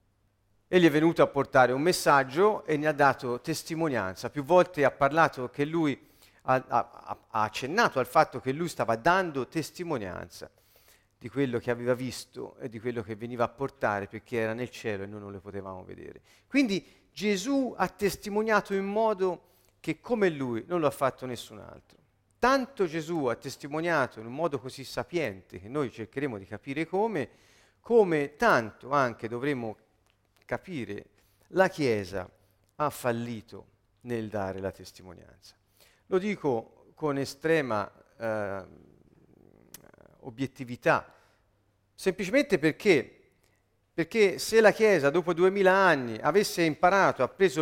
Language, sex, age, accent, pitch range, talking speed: Italian, male, 40-59, native, 110-165 Hz, 140 wpm